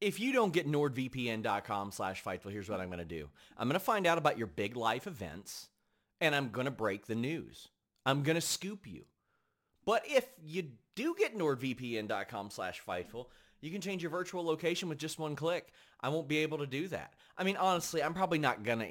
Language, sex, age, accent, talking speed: English, male, 30-49, American, 215 wpm